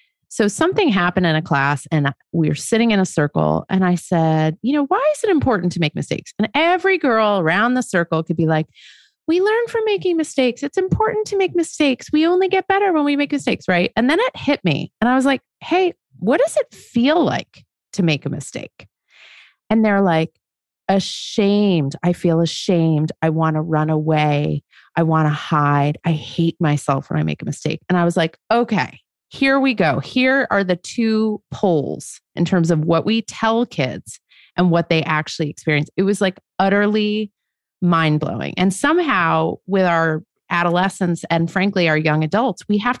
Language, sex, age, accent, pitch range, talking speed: English, female, 30-49, American, 160-235 Hz, 195 wpm